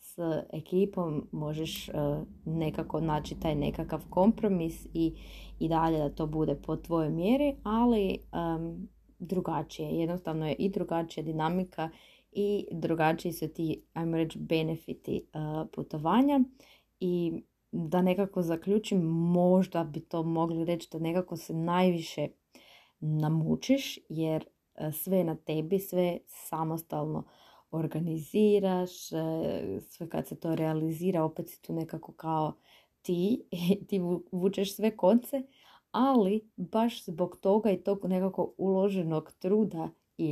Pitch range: 160-190 Hz